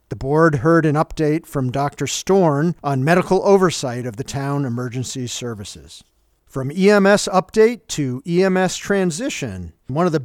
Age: 40-59